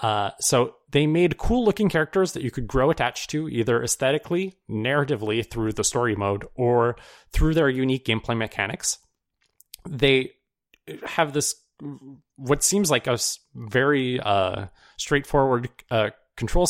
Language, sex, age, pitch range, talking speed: English, male, 30-49, 115-145 Hz, 135 wpm